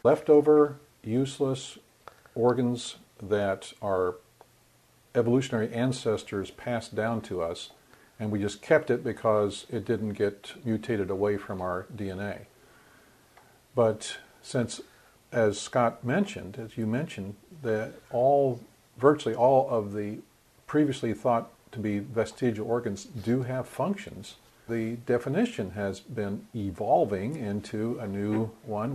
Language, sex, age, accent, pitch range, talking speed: English, male, 50-69, American, 105-130 Hz, 115 wpm